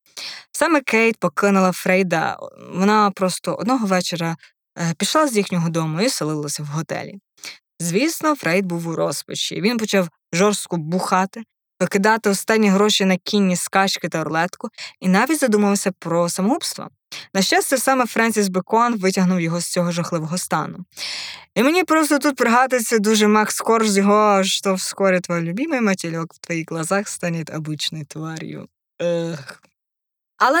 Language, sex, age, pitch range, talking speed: Ukrainian, female, 20-39, 175-230 Hz, 135 wpm